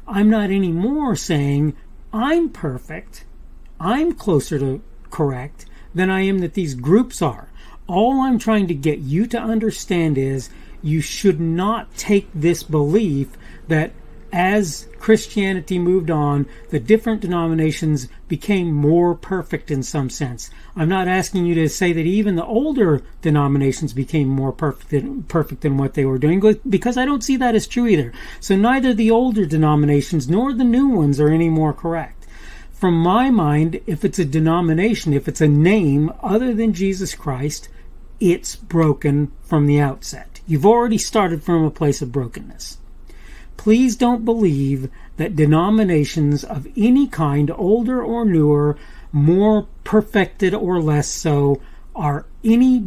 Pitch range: 150-200 Hz